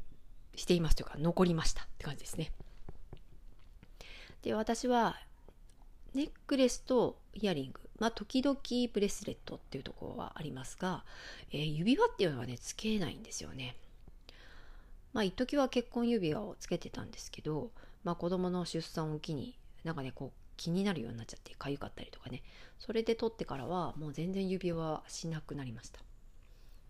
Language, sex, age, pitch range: Japanese, female, 40-59, 145-205 Hz